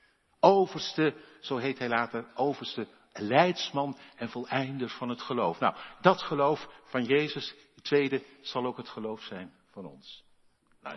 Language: Dutch